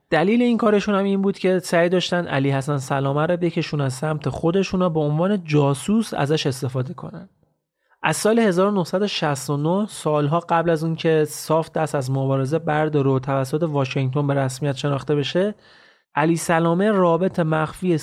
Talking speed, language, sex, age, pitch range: 160 wpm, Persian, male, 30-49, 140-180 Hz